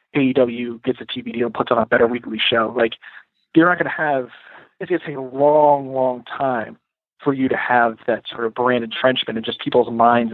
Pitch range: 120-150 Hz